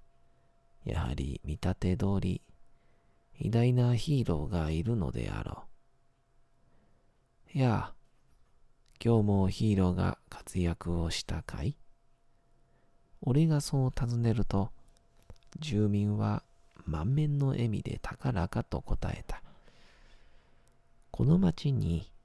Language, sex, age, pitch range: Japanese, male, 40-59, 85-130 Hz